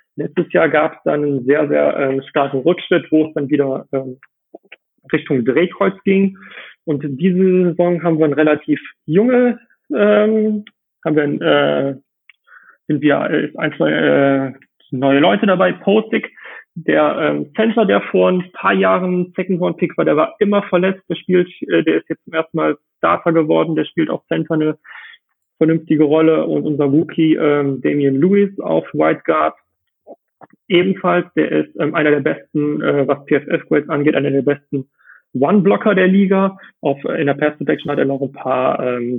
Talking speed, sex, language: 165 wpm, male, German